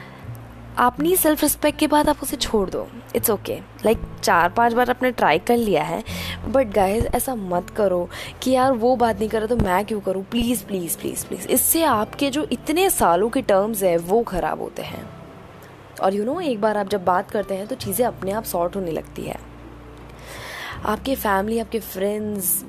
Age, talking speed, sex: 20-39, 200 wpm, female